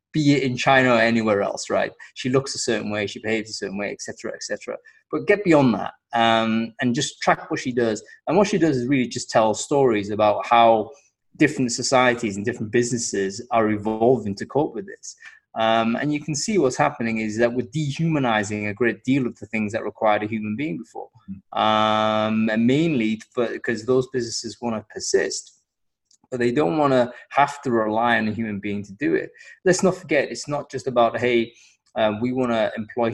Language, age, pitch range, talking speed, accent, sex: English, 20-39, 110-135 Hz, 205 wpm, British, male